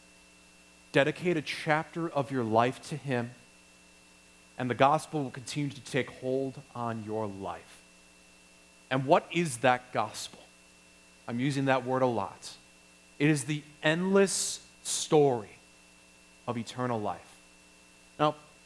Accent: American